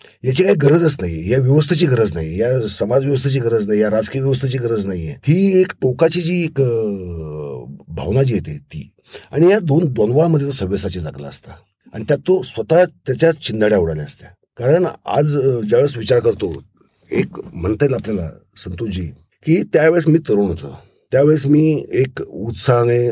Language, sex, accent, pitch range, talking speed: Marathi, male, native, 105-155 Hz, 160 wpm